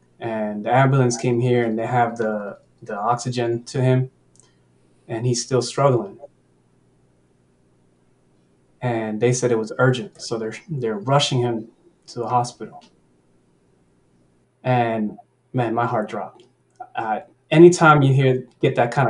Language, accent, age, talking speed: English, American, 20-39, 135 wpm